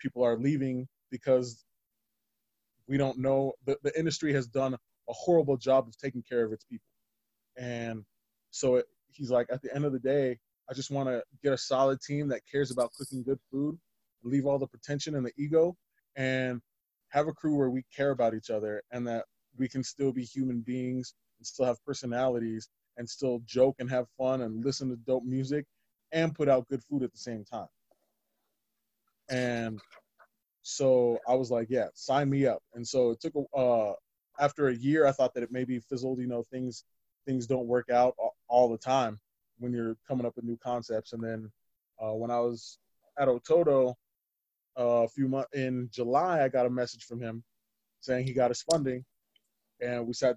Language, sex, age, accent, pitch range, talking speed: English, male, 20-39, American, 115-135 Hz, 200 wpm